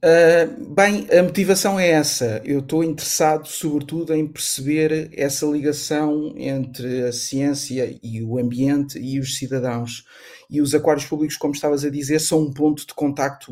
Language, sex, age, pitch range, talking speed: Portuguese, male, 50-69, 135-160 Hz, 160 wpm